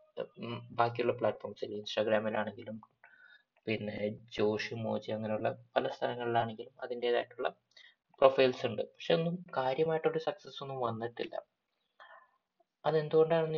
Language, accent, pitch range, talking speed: Malayalam, native, 110-145 Hz, 85 wpm